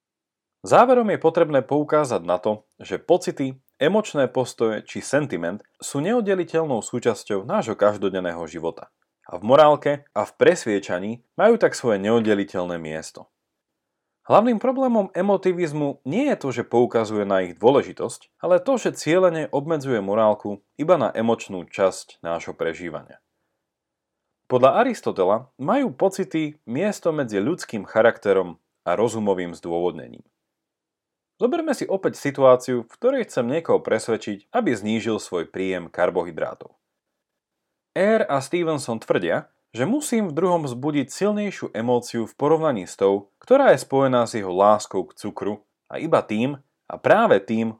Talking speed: 135 wpm